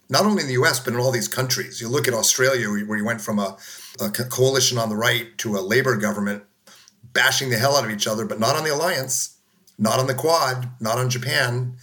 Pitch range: 110-130 Hz